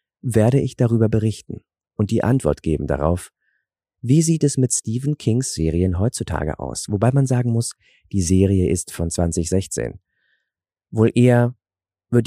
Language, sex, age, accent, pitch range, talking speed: German, male, 40-59, German, 85-110 Hz, 145 wpm